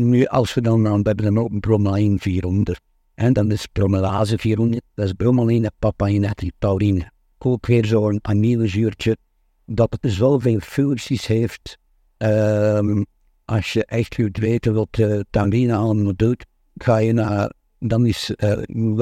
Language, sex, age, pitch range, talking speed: Dutch, male, 60-79, 100-120 Hz, 160 wpm